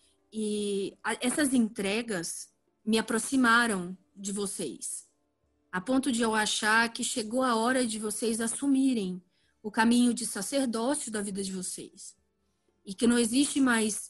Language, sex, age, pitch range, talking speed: Portuguese, female, 20-39, 200-245 Hz, 135 wpm